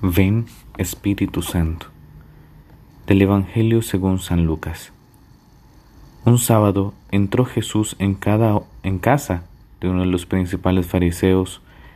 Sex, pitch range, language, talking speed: male, 90-105 Hz, Spanish, 105 wpm